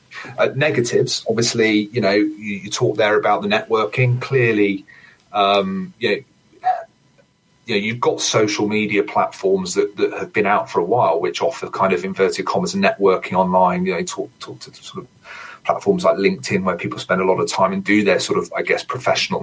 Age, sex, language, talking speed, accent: 30-49, male, English, 205 wpm, British